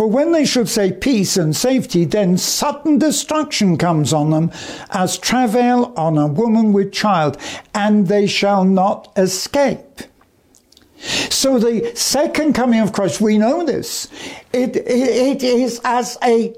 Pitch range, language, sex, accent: 190-260 Hz, English, male, British